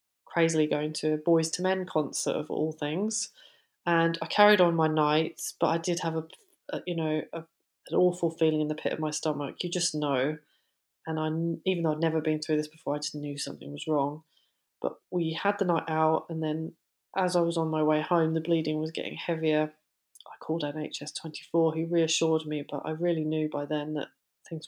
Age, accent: 20-39, British